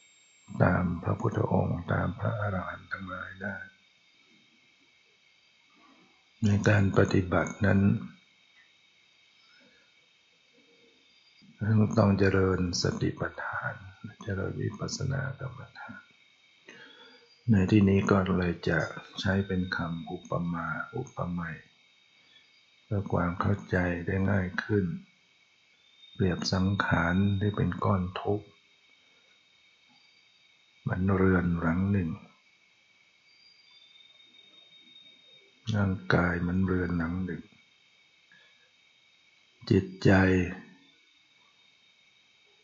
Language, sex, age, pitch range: Thai, male, 60-79, 90-100 Hz